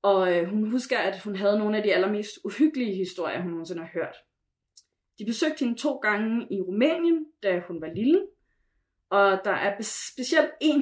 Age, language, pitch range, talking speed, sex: 30-49, Danish, 195-250 Hz, 175 wpm, female